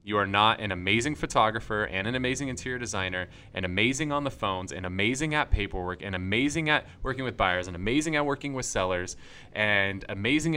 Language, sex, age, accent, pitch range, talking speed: English, male, 20-39, American, 95-125 Hz, 195 wpm